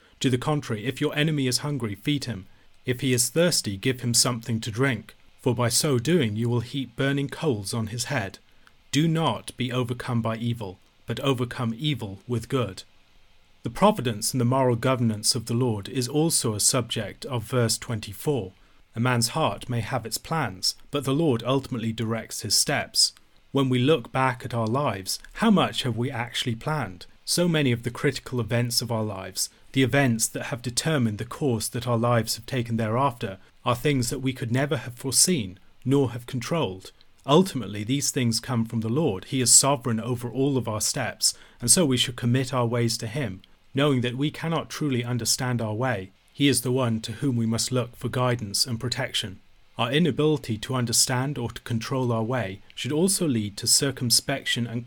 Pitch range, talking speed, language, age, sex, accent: 115-135 Hz, 195 wpm, English, 40-59, male, British